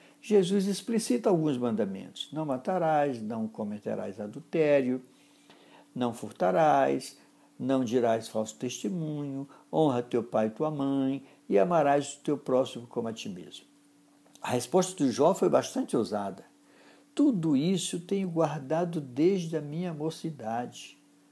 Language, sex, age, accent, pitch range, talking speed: Portuguese, male, 60-79, Brazilian, 125-195 Hz, 125 wpm